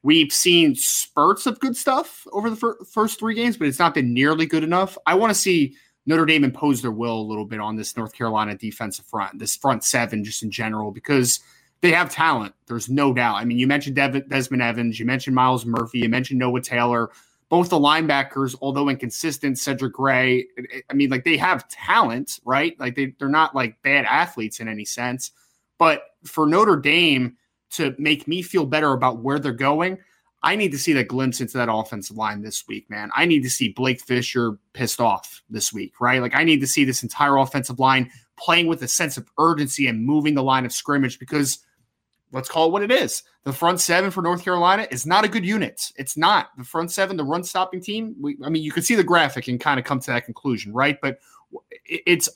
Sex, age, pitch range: male, 20-39, 125-170 Hz